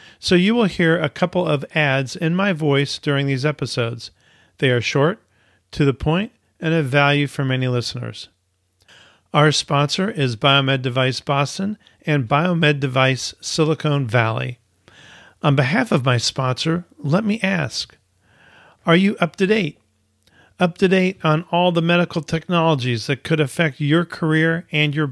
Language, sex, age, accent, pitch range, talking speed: English, male, 40-59, American, 115-160 Hz, 155 wpm